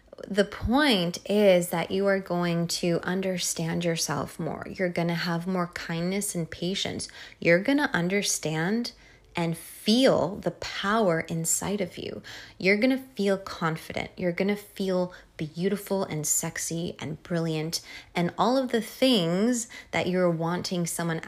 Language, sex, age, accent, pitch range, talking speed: English, female, 20-39, American, 170-205 Hz, 150 wpm